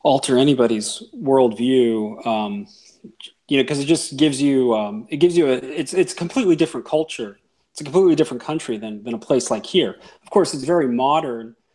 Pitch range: 125-175 Hz